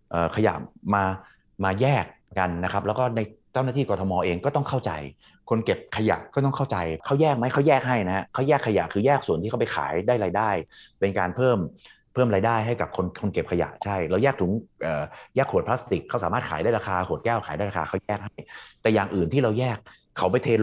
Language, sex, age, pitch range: Thai, male, 30-49, 95-125 Hz